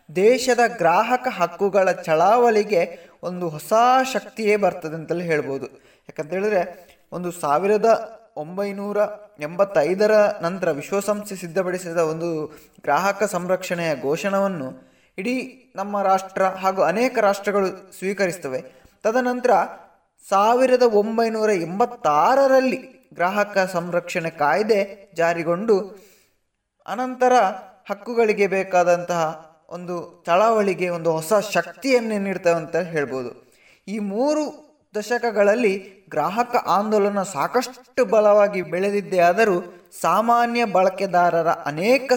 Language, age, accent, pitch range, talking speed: Kannada, 20-39, native, 170-215 Hz, 85 wpm